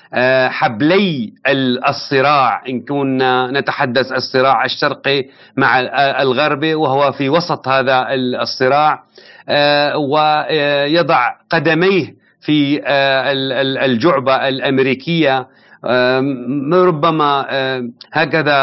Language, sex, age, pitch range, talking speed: Arabic, male, 40-59, 130-150 Hz, 70 wpm